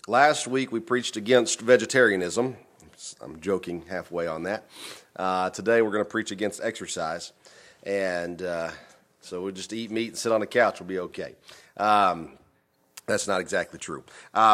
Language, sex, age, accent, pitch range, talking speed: English, male, 40-59, American, 105-120 Hz, 165 wpm